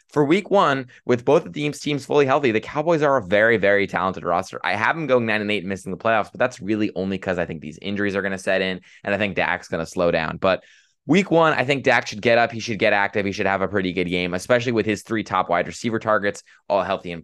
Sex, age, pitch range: male, 20-39, 95-125 Hz